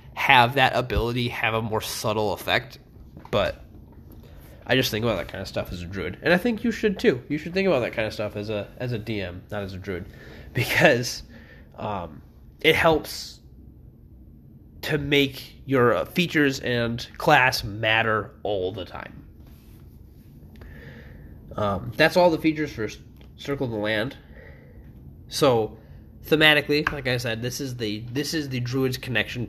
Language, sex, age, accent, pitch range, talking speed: English, male, 20-39, American, 100-140 Hz, 160 wpm